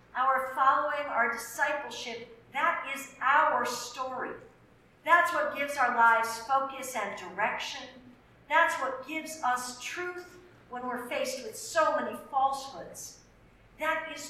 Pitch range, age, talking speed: 235-295 Hz, 50-69, 120 wpm